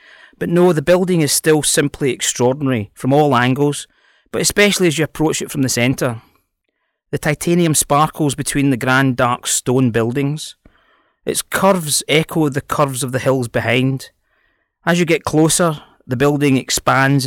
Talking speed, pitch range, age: 155 wpm, 125-155 Hz, 30-49